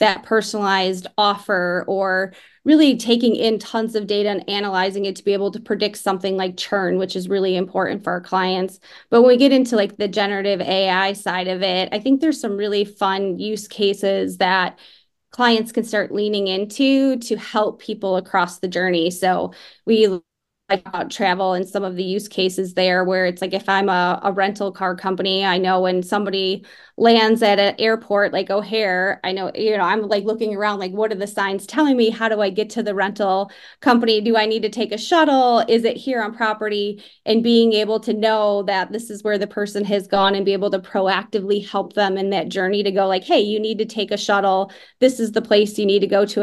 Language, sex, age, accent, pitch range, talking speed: English, female, 20-39, American, 190-215 Hz, 215 wpm